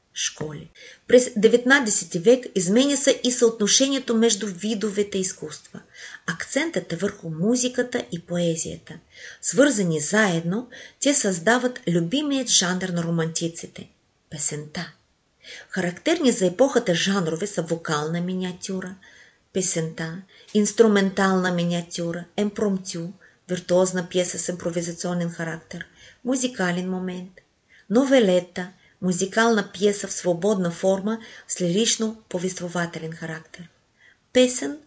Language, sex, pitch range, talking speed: Bulgarian, female, 175-235 Hz, 90 wpm